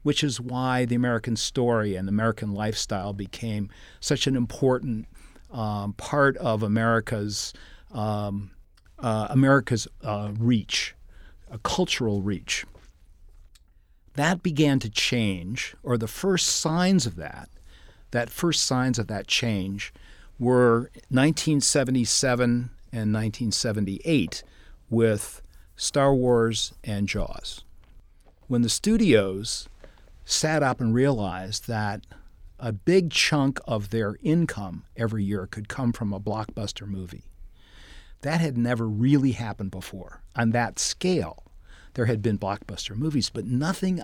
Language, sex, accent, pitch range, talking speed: English, male, American, 100-125 Hz, 120 wpm